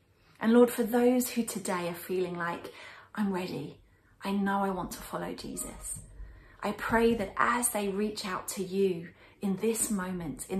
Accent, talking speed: British, 175 wpm